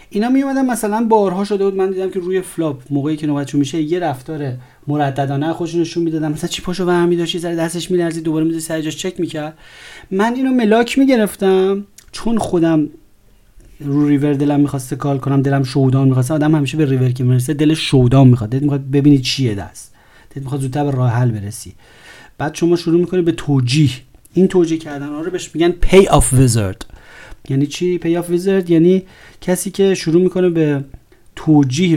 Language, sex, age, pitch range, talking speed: Persian, male, 30-49, 130-170 Hz, 180 wpm